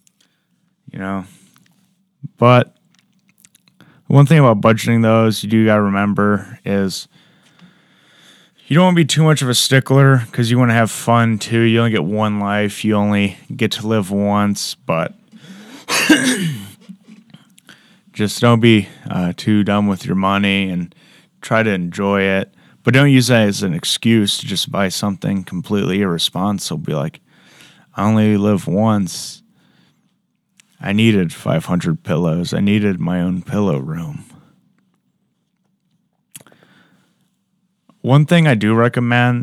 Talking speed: 135 wpm